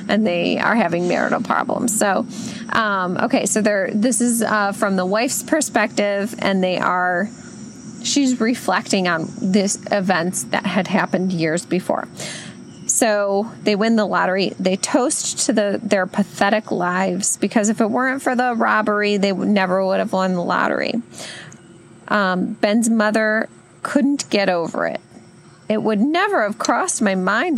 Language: English